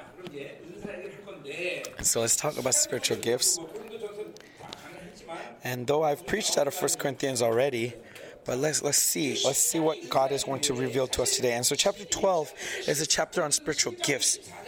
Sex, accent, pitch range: male, American, 140-195 Hz